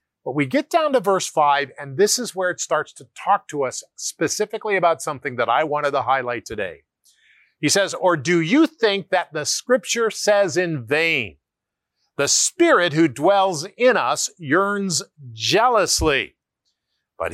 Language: English